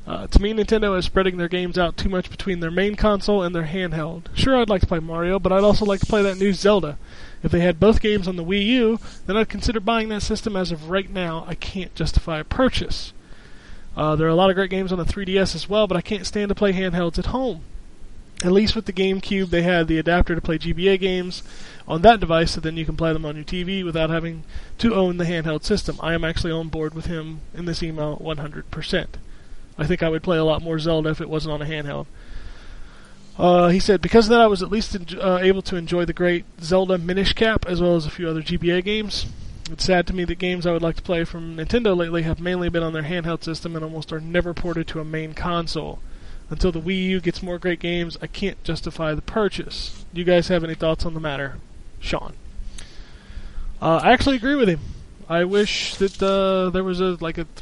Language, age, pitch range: English, 20-39, 160-195 Hz